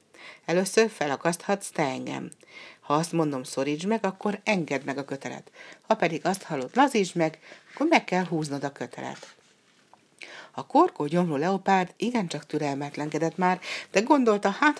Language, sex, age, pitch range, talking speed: Hungarian, female, 60-79, 150-200 Hz, 145 wpm